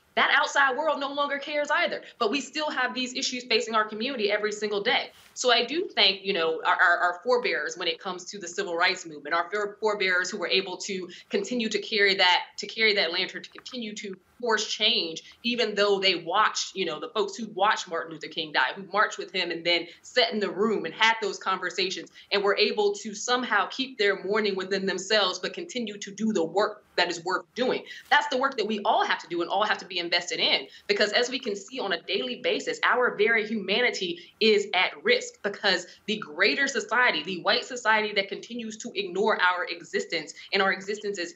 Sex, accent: female, American